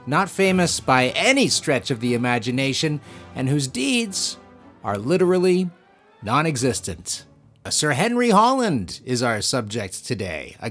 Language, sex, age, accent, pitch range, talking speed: English, male, 30-49, American, 115-185 Hz, 130 wpm